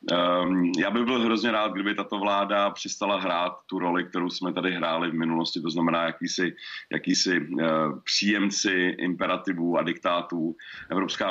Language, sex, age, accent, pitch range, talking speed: Czech, male, 30-49, native, 85-100 Hz, 145 wpm